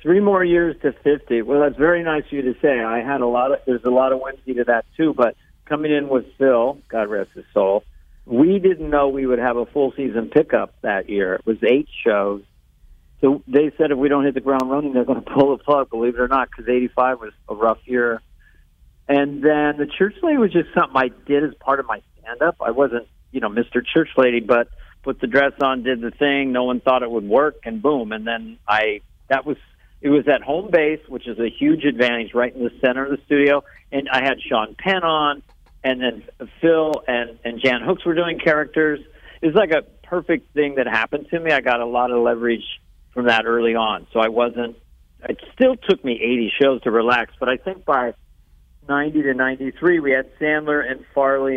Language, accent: English, American